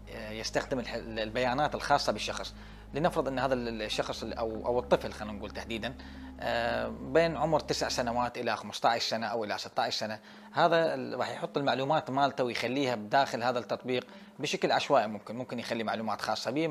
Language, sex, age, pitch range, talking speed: Arabic, male, 30-49, 120-155 Hz, 145 wpm